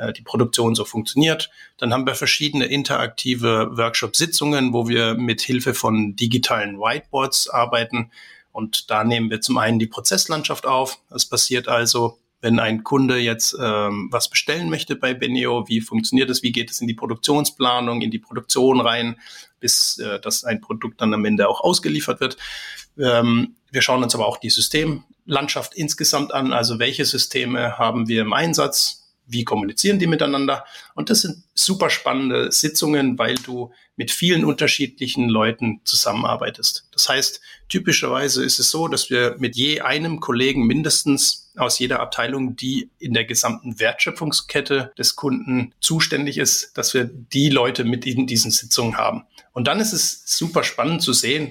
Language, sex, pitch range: German, male, 115-145 Hz